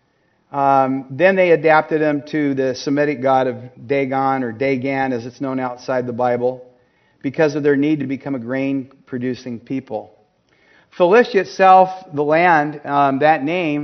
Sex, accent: male, American